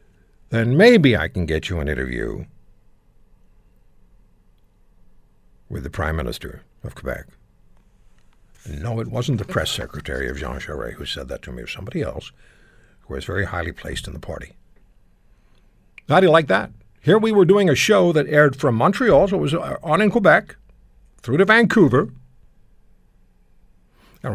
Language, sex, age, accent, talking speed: English, male, 60-79, American, 160 wpm